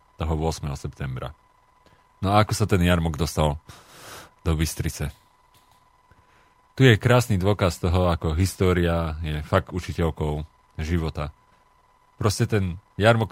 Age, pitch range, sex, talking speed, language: 40-59, 85-100 Hz, male, 115 wpm, Slovak